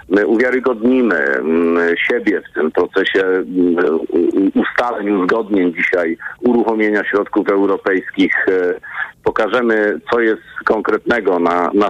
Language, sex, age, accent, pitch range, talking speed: Polish, male, 50-69, native, 105-125 Hz, 90 wpm